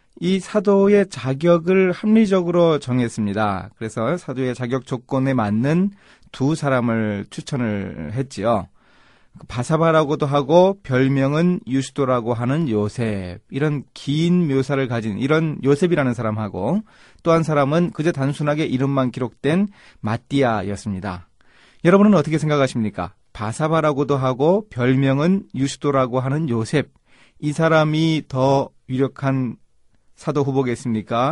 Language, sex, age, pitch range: Korean, male, 30-49, 120-165 Hz